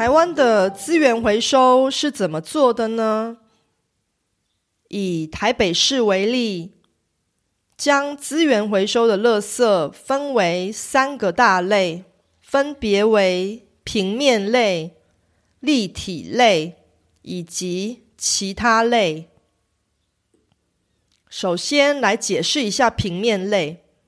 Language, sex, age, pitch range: Korean, female, 30-49, 190-265 Hz